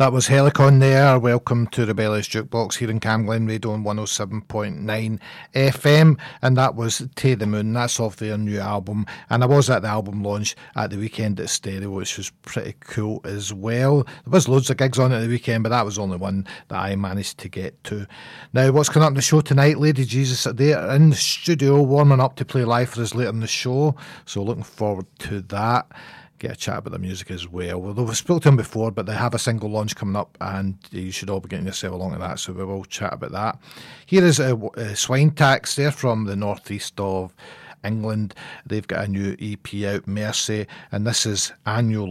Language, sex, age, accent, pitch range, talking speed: English, male, 40-59, British, 105-135 Hz, 225 wpm